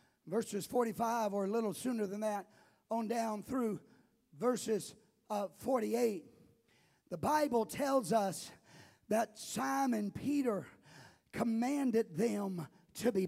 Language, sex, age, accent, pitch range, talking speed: English, male, 50-69, American, 235-350 Hz, 115 wpm